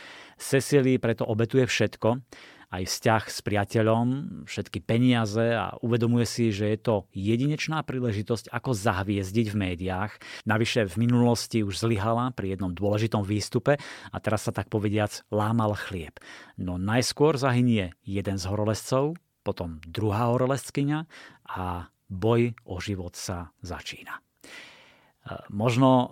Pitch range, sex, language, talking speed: 105-125 Hz, male, Slovak, 125 wpm